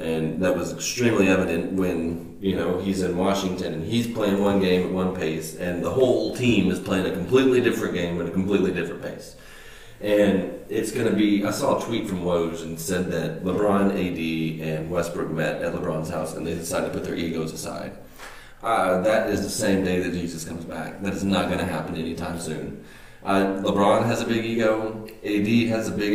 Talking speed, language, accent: 210 wpm, English, American